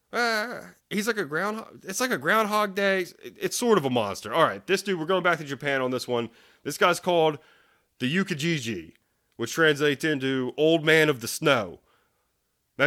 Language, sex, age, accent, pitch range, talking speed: English, male, 30-49, American, 120-160 Hz, 195 wpm